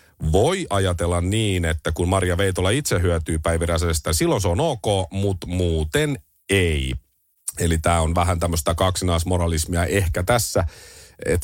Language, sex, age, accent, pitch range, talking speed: Finnish, male, 40-59, native, 85-110 Hz, 135 wpm